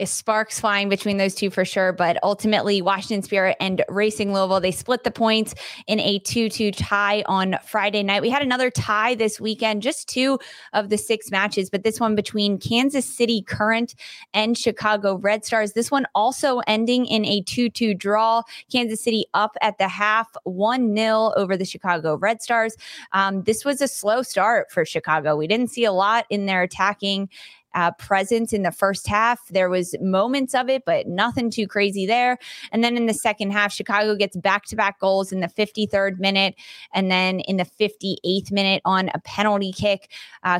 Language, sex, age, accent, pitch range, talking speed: English, female, 20-39, American, 190-220 Hz, 185 wpm